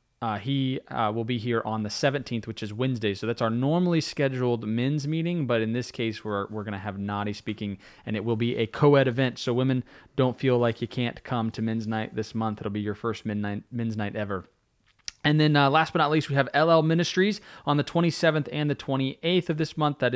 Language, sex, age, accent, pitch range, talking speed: English, male, 20-39, American, 105-140 Hz, 235 wpm